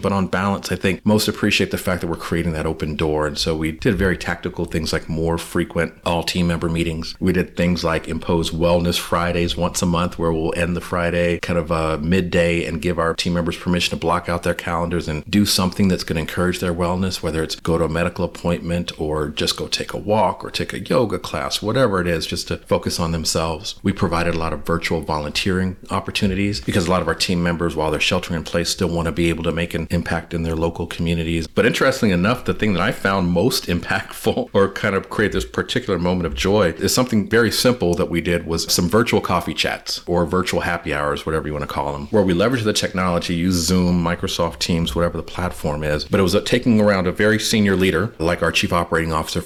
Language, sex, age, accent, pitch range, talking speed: English, male, 40-59, American, 85-95 Hz, 235 wpm